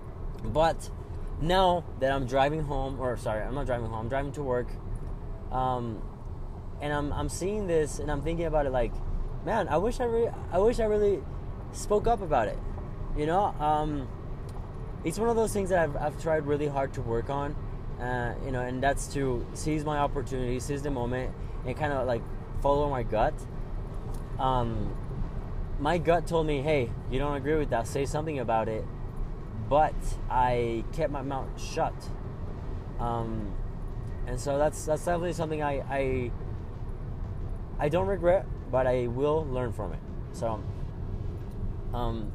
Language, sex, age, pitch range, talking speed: English, male, 20-39, 110-145 Hz, 165 wpm